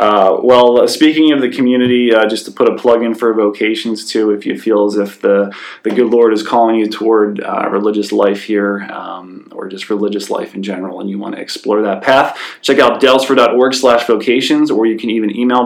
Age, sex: 20-39, male